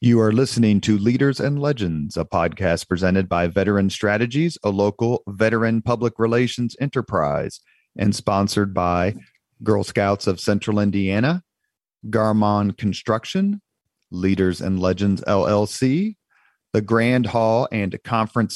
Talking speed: 125 wpm